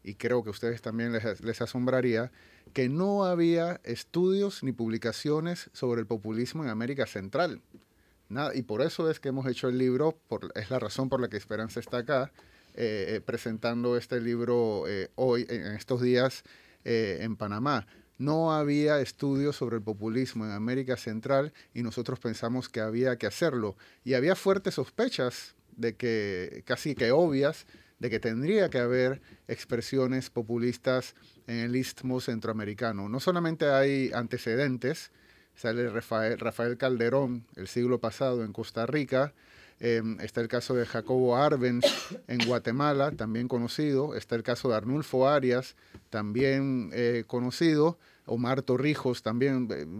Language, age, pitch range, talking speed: Spanish, 30-49, 115-135 Hz, 150 wpm